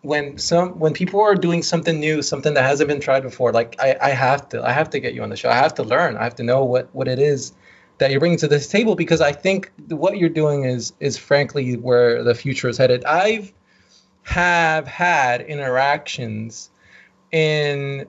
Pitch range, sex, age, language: 140-170 Hz, male, 20-39, English